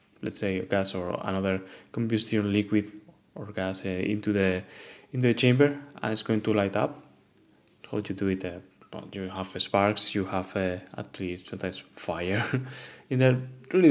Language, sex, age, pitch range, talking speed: English, male, 20-39, 100-120 Hz, 180 wpm